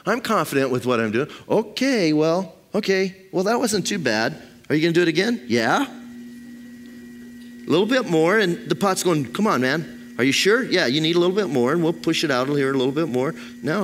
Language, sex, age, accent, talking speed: English, male, 40-59, American, 240 wpm